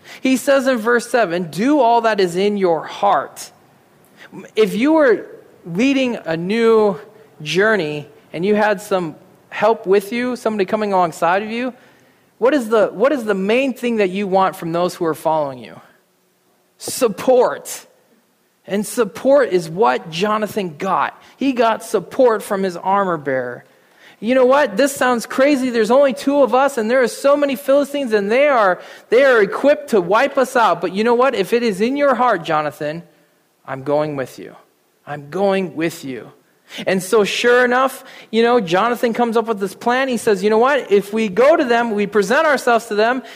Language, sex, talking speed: English, male, 185 wpm